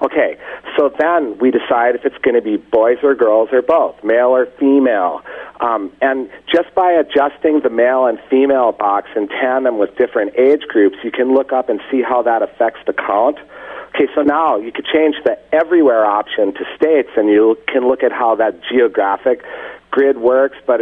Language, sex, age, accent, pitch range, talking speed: English, male, 40-59, American, 125-180 Hz, 195 wpm